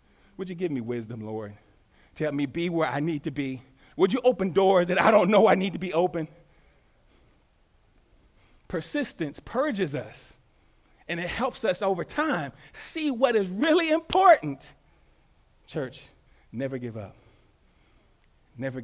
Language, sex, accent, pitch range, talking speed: English, male, American, 110-160 Hz, 150 wpm